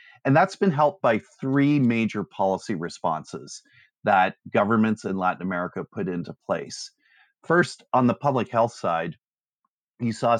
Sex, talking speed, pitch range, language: male, 145 wpm, 100-135 Hz, English